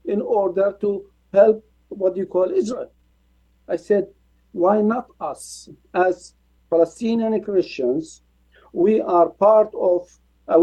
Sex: male